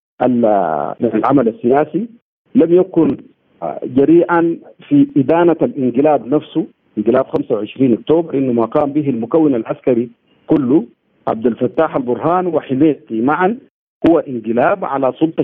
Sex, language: male, Arabic